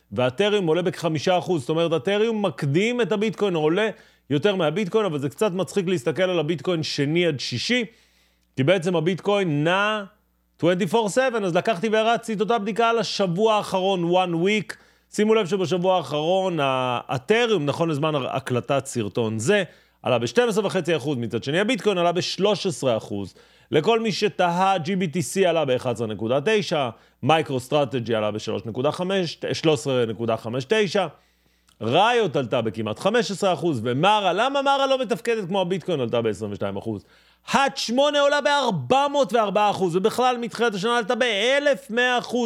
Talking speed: 125 wpm